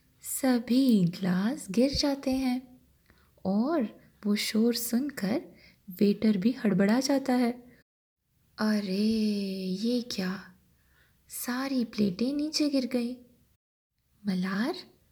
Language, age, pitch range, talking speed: Hindi, 20-39, 200-275 Hz, 90 wpm